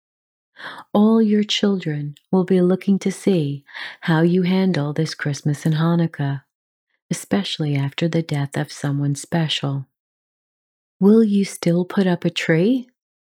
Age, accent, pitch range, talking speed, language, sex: 40-59, American, 150-205 Hz, 130 wpm, English, female